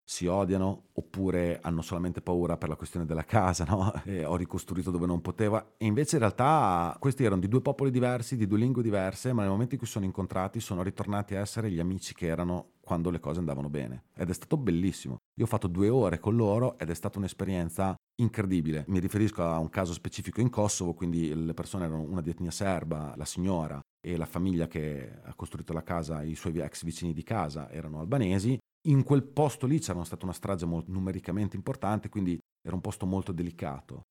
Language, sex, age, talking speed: Italian, male, 30-49, 210 wpm